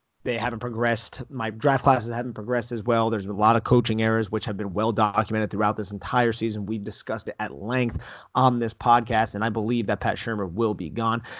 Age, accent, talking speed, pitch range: 30-49, American, 220 wpm, 110-130 Hz